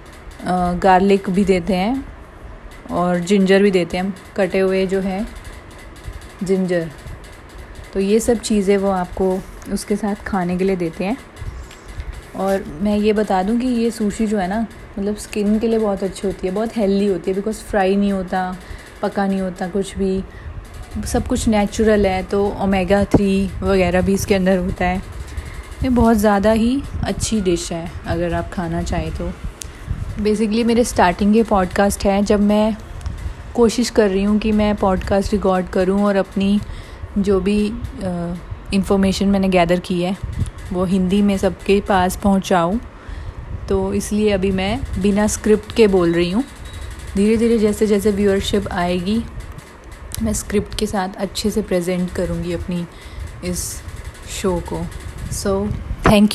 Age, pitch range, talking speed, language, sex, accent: 30-49, 180-210 Hz, 160 wpm, Hindi, female, native